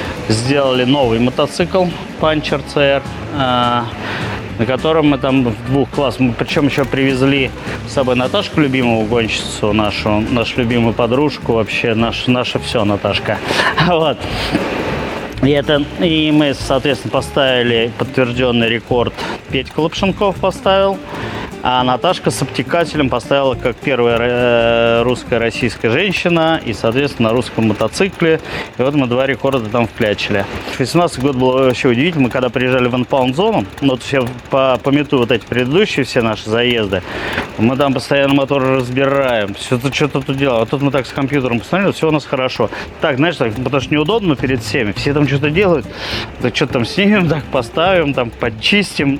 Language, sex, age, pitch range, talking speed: Russian, male, 20-39, 115-145 Hz, 155 wpm